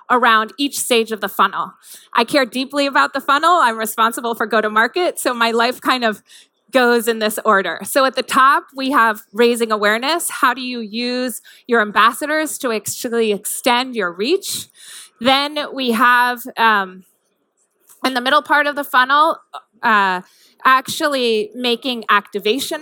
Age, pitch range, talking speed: 20-39, 215-265 Hz, 155 wpm